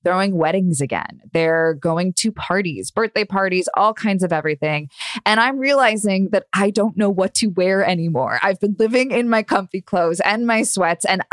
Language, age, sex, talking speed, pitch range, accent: English, 20-39, female, 185 wpm, 170-220 Hz, American